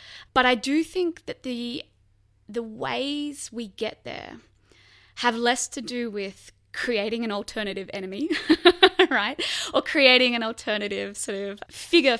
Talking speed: 140 wpm